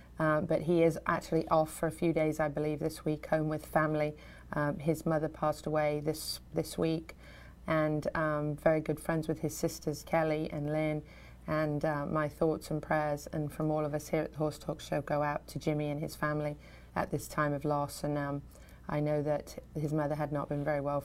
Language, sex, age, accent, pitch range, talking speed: English, female, 30-49, British, 145-160 Hz, 220 wpm